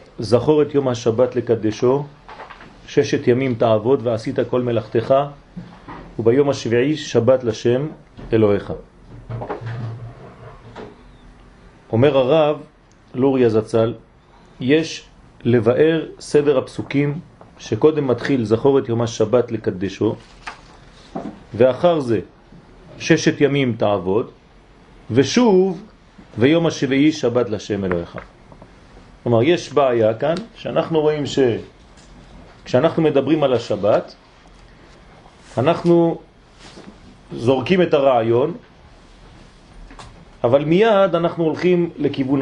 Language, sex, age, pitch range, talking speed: French, male, 40-59, 115-155 Hz, 85 wpm